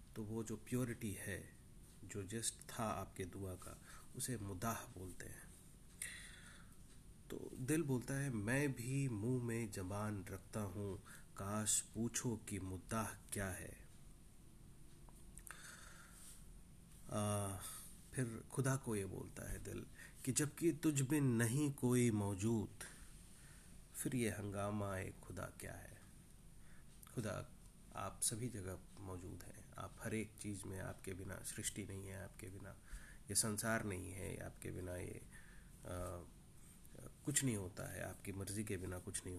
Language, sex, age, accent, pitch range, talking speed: Hindi, male, 30-49, native, 100-125 Hz, 135 wpm